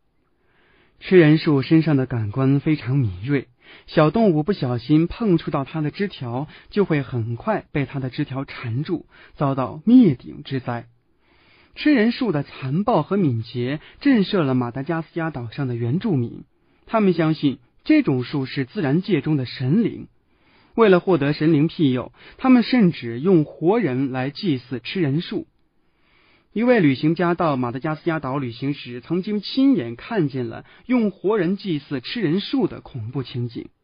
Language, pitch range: Chinese, 130-190 Hz